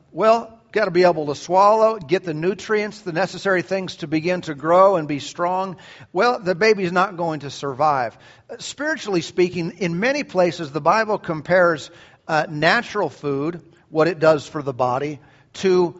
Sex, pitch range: male, 150-195 Hz